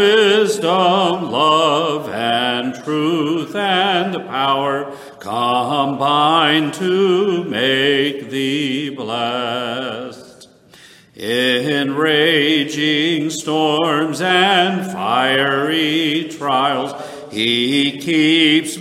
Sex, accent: male, American